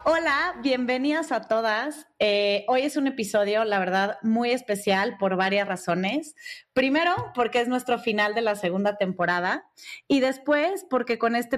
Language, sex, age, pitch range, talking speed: Spanish, female, 30-49, 195-240 Hz, 155 wpm